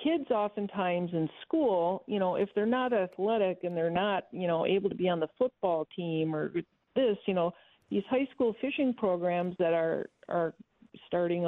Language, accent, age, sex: English, American, 50-69, female